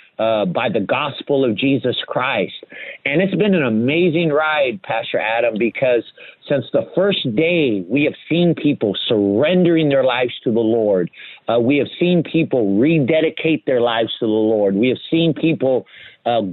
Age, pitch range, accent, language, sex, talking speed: 50-69, 125-170 Hz, American, English, male, 165 wpm